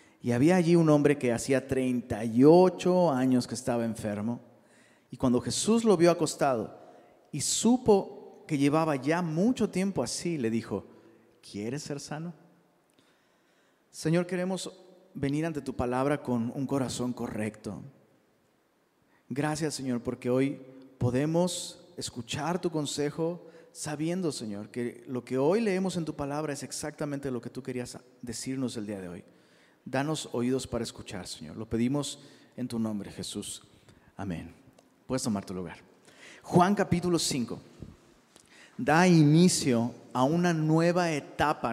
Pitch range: 125-170 Hz